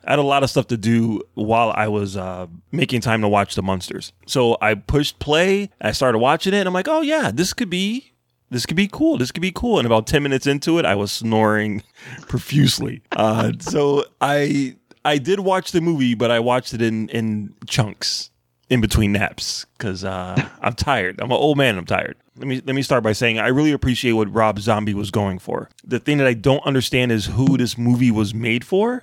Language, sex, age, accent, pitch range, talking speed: English, male, 20-39, American, 110-145 Hz, 225 wpm